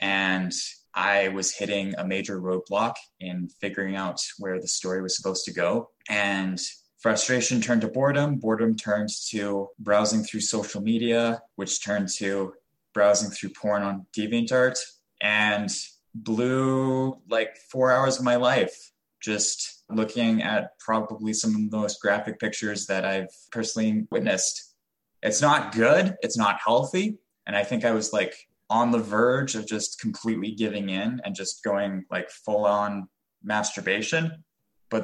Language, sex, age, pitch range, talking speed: English, male, 20-39, 100-120 Hz, 150 wpm